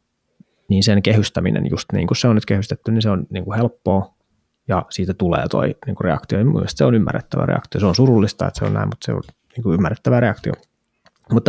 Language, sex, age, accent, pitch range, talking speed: Finnish, male, 20-39, native, 95-110 Hz, 225 wpm